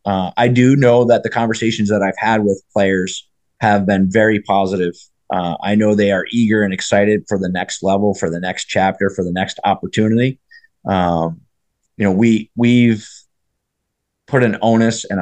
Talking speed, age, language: 180 wpm, 30-49, English